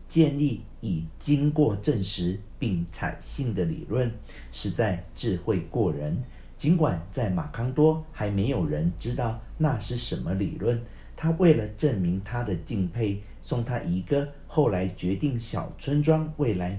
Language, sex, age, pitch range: Chinese, male, 50-69, 95-150 Hz